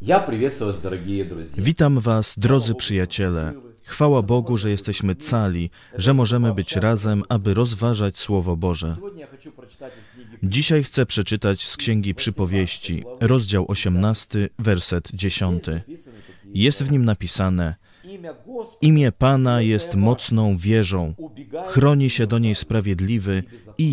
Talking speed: 105 wpm